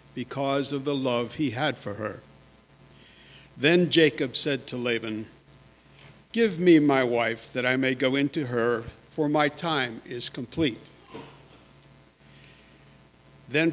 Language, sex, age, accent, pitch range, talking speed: English, male, 60-79, American, 125-155 Hz, 125 wpm